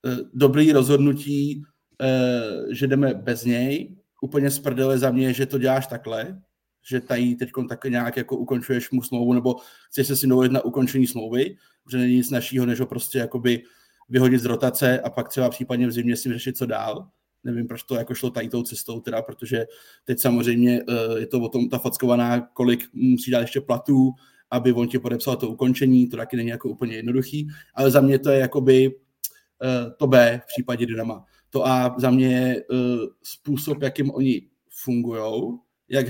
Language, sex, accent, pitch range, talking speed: Czech, male, native, 125-145 Hz, 180 wpm